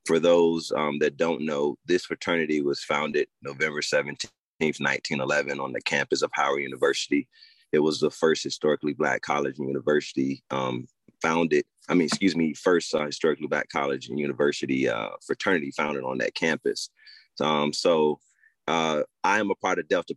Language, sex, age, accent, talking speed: English, male, 30-49, American, 170 wpm